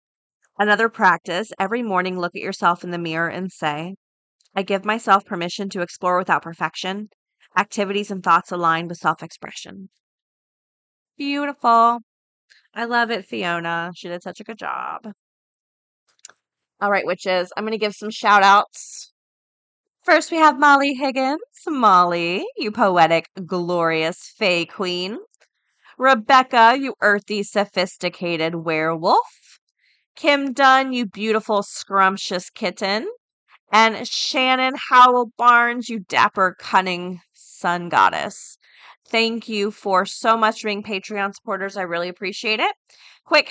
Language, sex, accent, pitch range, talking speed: English, female, American, 185-240 Hz, 125 wpm